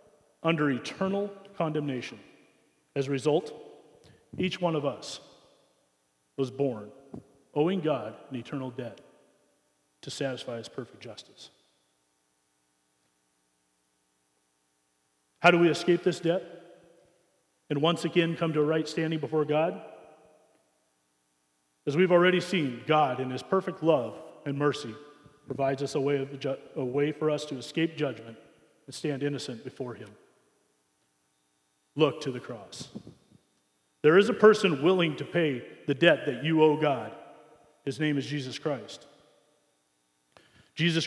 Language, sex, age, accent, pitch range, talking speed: English, male, 40-59, American, 115-170 Hz, 130 wpm